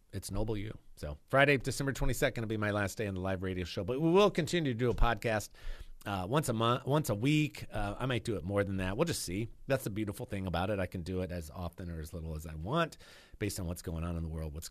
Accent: American